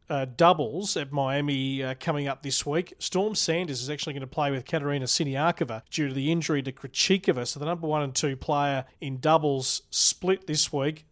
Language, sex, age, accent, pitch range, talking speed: English, male, 40-59, Australian, 140-165 Hz, 200 wpm